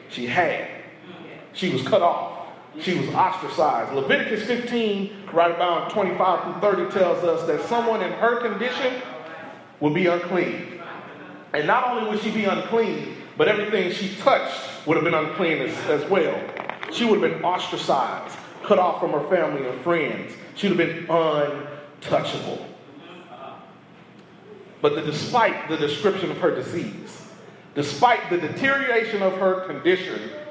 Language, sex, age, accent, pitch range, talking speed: English, male, 40-59, American, 175-230 Hz, 145 wpm